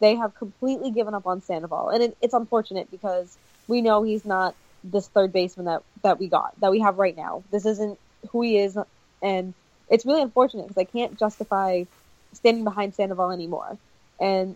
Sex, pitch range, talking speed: female, 190-230 Hz, 190 wpm